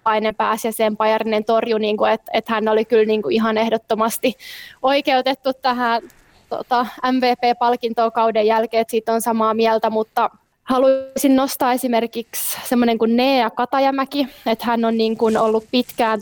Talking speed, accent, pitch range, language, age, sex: 150 wpm, native, 220-235 Hz, Finnish, 20-39, female